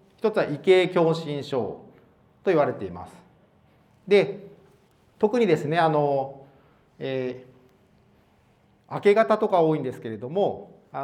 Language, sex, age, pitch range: Japanese, male, 40-59, 150-200 Hz